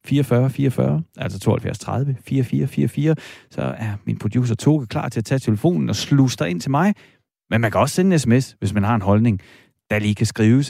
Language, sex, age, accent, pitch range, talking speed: Danish, male, 30-49, native, 110-155 Hz, 195 wpm